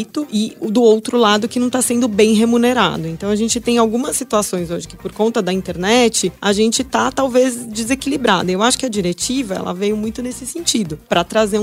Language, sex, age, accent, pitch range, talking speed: Portuguese, female, 20-39, Brazilian, 190-245 Hz, 205 wpm